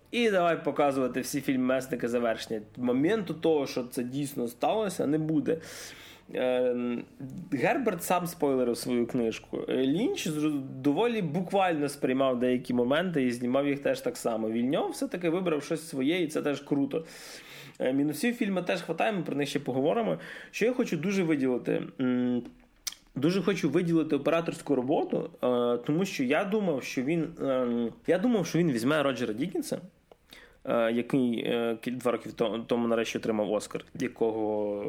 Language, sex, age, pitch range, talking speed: Ukrainian, male, 20-39, 120-160 Hz, 150 wpm